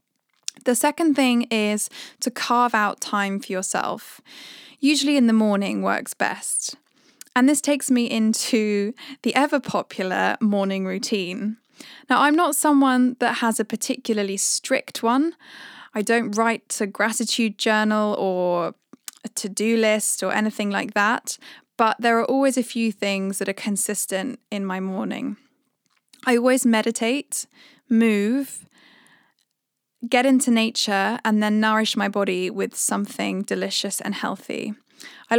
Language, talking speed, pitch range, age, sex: English, 135 wpm, 200-255 Hz, 10-29, female